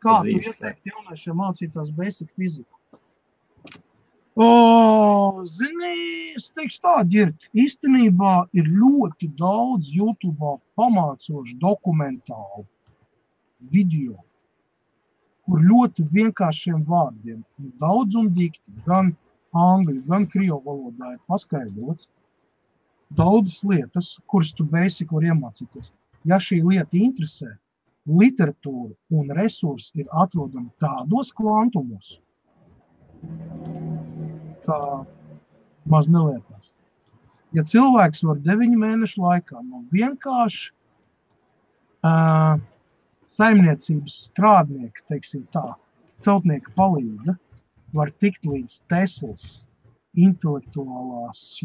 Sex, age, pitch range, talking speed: male, 50-69, 140-200 Hz, 80 wpm